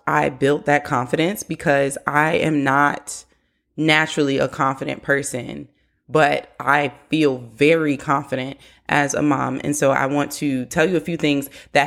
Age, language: 20-39, English